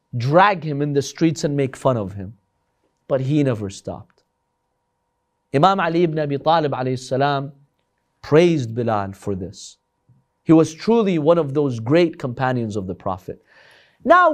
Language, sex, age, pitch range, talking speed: English, male, 30-49, 150-205 Hz, 145 wpm